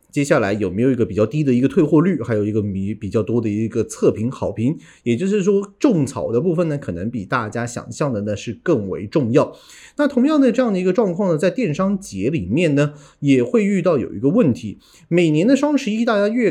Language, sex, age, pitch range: Chinese, male, 30-49, 125-195 Hz